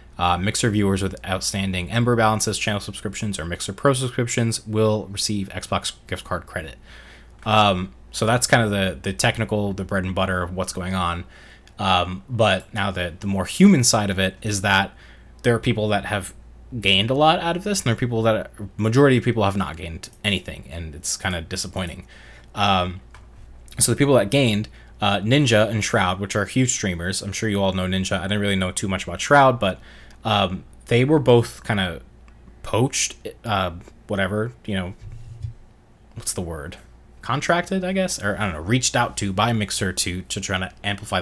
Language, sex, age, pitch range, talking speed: English, male, 20-39, 95-115 Hz, 195 wpm